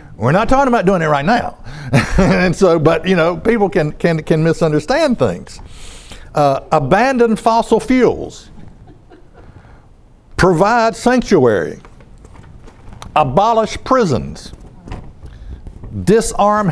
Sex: male